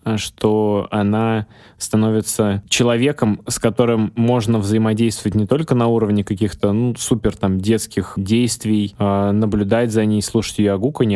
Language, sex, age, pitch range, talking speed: Russian, male, 20-39, 100-115 Hz, 135 wpm